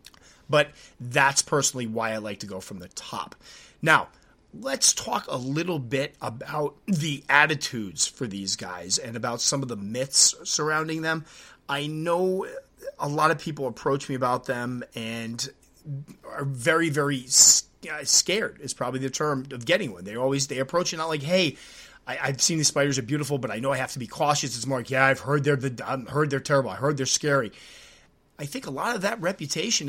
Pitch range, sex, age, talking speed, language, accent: 135-180 Hz, male, 30-49, 200 wpm, English, American